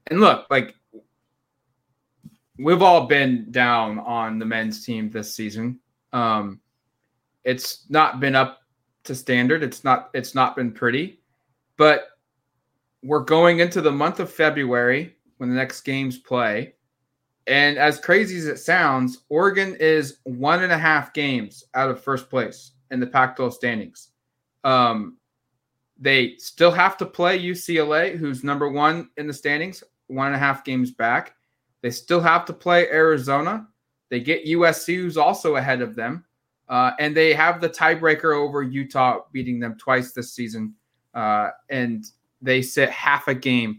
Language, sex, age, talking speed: English, male, 20-39, 155 wpm